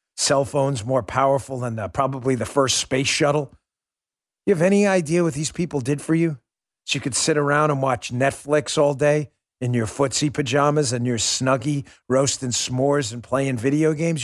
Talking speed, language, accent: 185 wpm, English, American